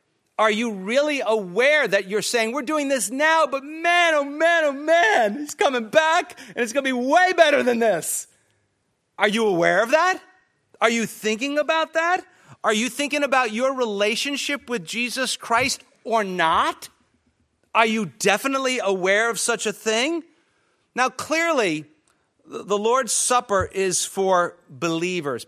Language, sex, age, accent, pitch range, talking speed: English, male, 40-59, American, 210-295 Hz, 155 wpm